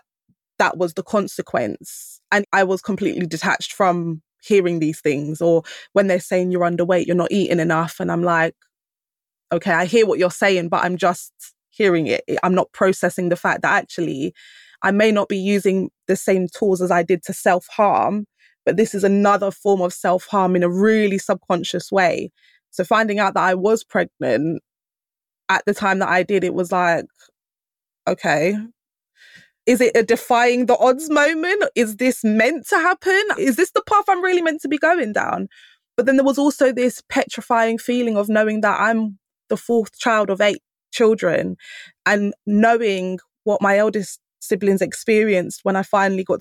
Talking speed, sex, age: 180 wpm, female, 20-39